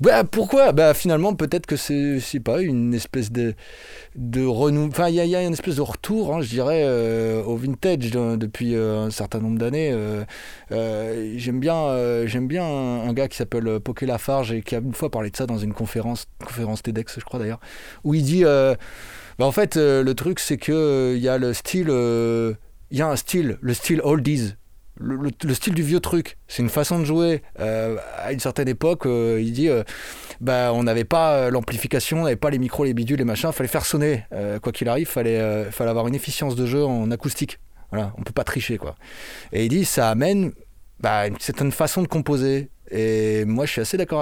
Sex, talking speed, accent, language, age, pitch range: male, 230 wpm, French, French, 20-39, 115-150 Hz